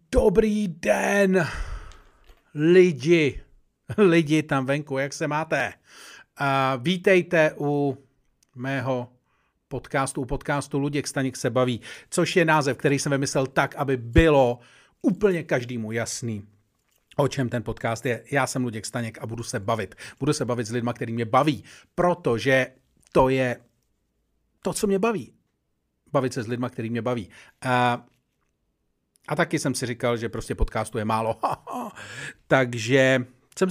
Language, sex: Czech, male